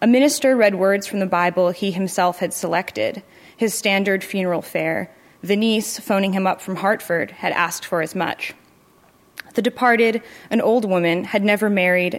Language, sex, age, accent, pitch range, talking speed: English, female, 20-39, American, 180-205 Hz, 170 wpm